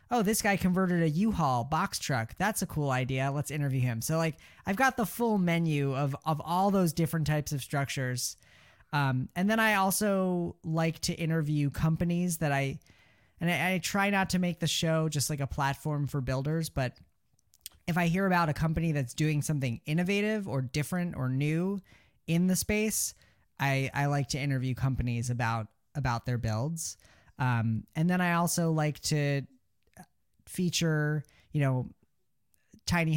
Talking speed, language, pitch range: 170 wpm, English, 130-170 Hz